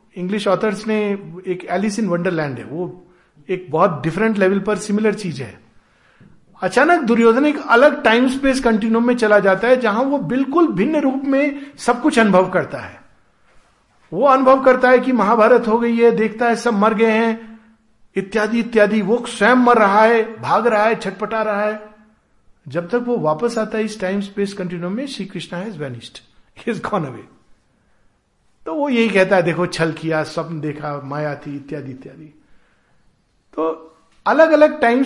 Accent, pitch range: native, 180-240 Hz